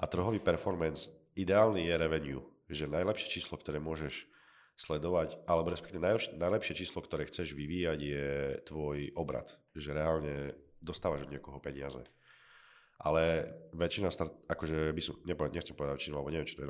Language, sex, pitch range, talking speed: Slovak, male, 75-85 Hz, 145 wpm